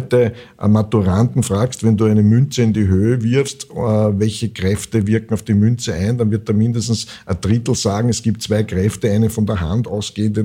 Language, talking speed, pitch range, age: German, 205 wpm, 100-120 Hz, 60-79